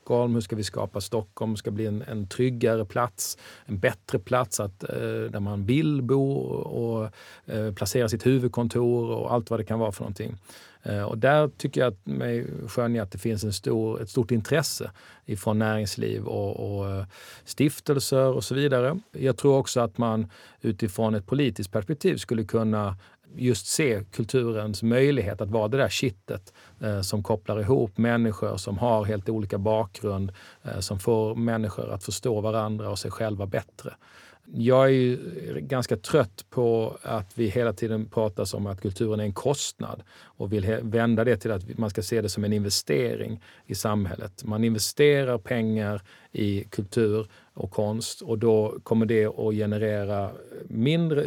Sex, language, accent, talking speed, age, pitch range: male, Swedish, native, 160 wpm, 40-59, 105-120 Hz